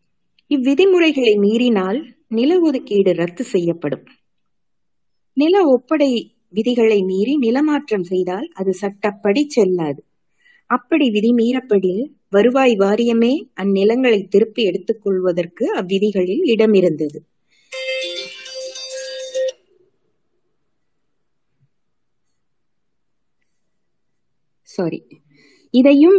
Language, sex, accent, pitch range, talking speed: Tamil, female, native, 195-270 Hz, 65 wpm